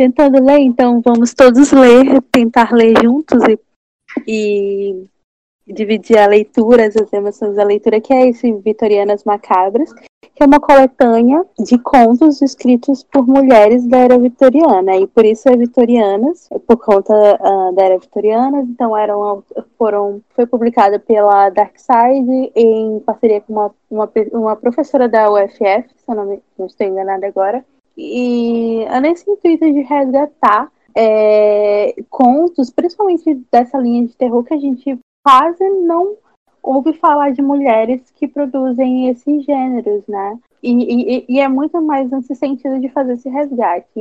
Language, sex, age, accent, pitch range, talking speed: Portuguese, female, 20-39, Brazilian, 215-270 Hz, 150 wpm